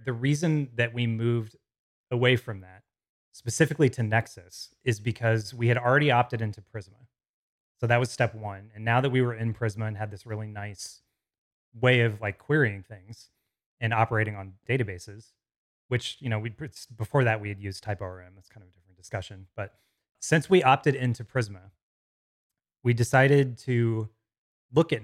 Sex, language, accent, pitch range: male, English, American, 105-125 Hz